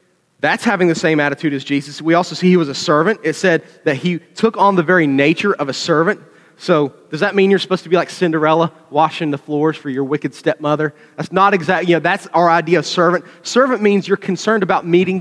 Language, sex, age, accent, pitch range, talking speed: English, male, 30-49, American, 145-180 Hz, 235 wpm